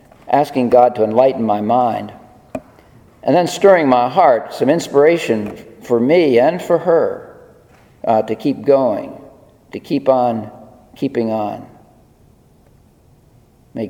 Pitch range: 110-135 Hz